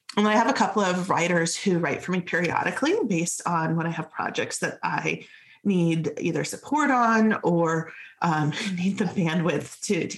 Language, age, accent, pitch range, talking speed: English, 30-49, American, 160-215 Hz, 185 wpm